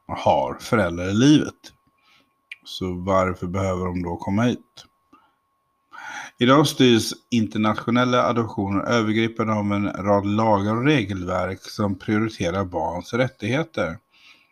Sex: male